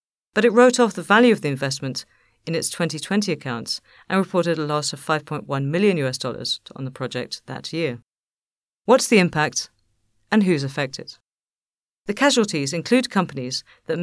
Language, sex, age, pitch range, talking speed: English, female, 50-69, 140-190 Hz, 155 wpm